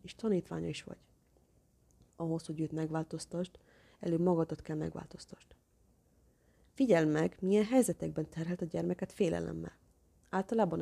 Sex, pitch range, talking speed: female, 155-180 Hz, 115 wpm